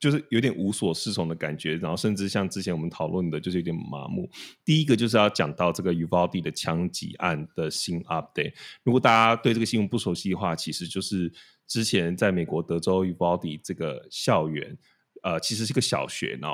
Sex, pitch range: male, 85-105 Hz